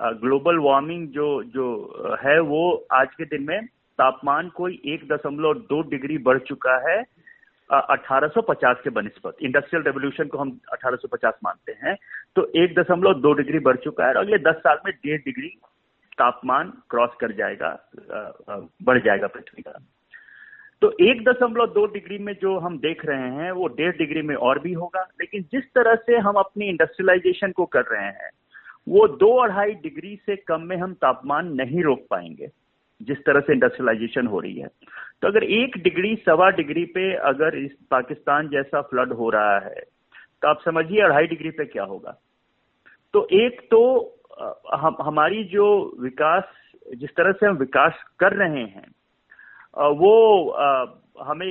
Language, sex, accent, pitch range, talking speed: Hindi, male, native, 150-220 Hz, 170 wpm